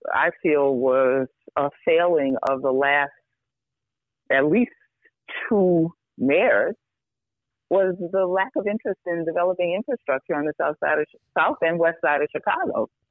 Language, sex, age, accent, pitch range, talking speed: English, female, 40-59, American, 135-190 Hz, 140 wpm